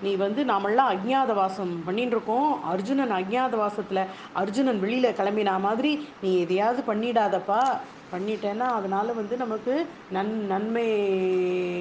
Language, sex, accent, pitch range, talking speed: Tamil, female, native, 195-275 Hz, 105 wpm